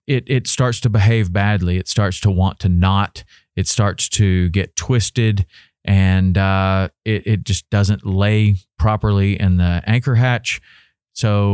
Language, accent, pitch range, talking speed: English, American, 95-110 Hz, 155 wpm